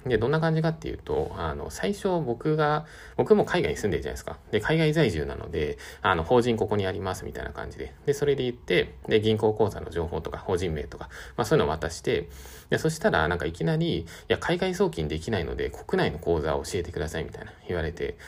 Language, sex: Japanese, male